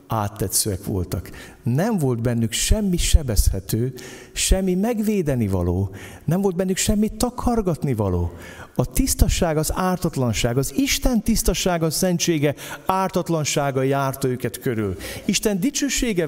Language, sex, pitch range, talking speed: Hungarian, male, 100-165 Hz, 105 wpm